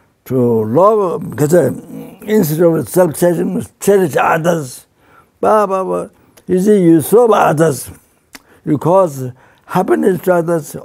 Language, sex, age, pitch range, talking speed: English, male, 60-79, 150-200 Hz, 120 wpm